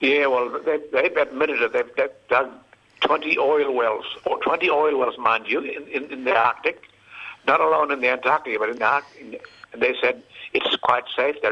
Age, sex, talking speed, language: 70-89, male, 190 wpm, English